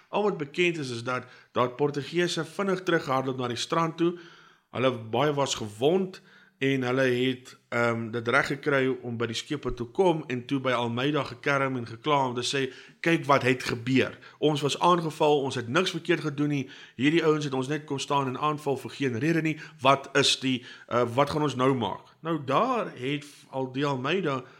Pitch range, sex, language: 125-150 Hz, male, English